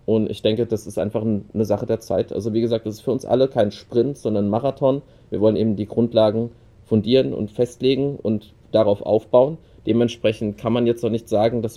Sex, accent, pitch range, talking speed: male, German, 100-115 Hz, 215 wpm